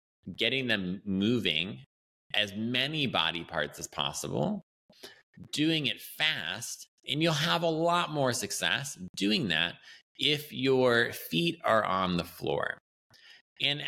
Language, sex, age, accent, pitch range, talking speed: English, male, 20-39, American, 85-120 Hz, 125 wpm